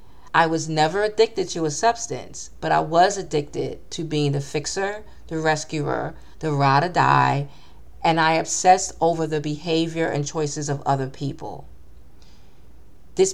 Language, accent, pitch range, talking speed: English, American, 135-165 Hz, 150 wpm